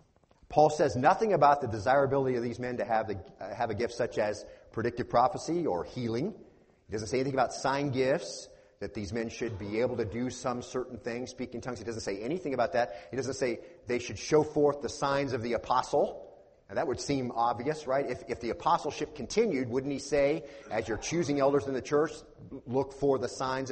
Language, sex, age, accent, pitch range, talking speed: English, male, 40-59, American, 110-135 Hz, 220 wpm